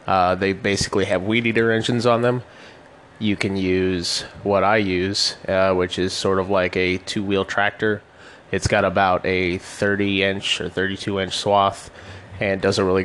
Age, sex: 20-39, male